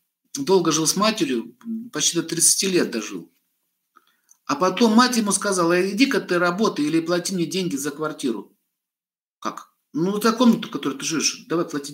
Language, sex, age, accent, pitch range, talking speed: Russian, male, 50-69, native, 165-210 Hz, 165 wpm